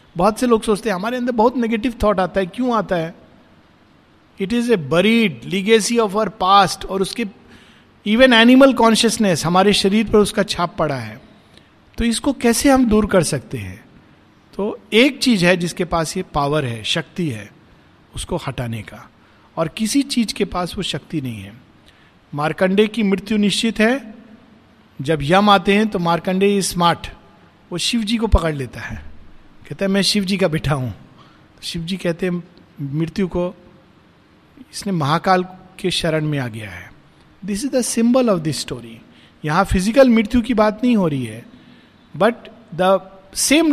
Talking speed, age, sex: 170 wpm, 50-69, male